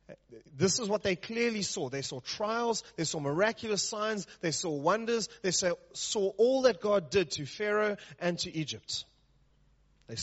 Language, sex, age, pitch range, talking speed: English, male, 30-49, 135-190 Hz, 170 wpm